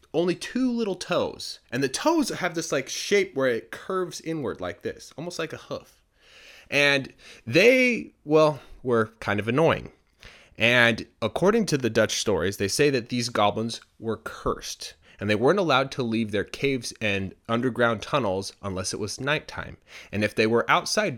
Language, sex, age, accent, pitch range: Chinese, male, 20-39, American, 95-140 Hz